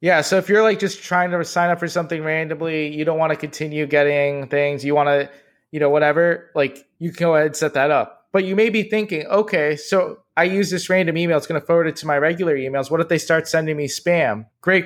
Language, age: English, 20-39